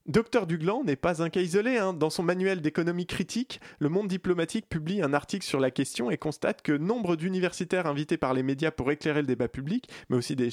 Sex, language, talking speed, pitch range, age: male, French, 220 wpm, 135-175 Hz, 20-39